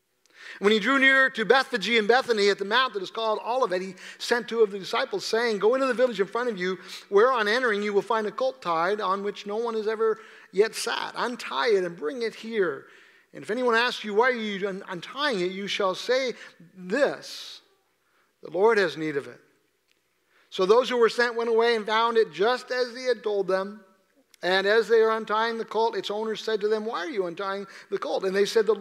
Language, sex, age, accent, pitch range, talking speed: English, male, 50-69, American, 205-275 Hz, 230 wpm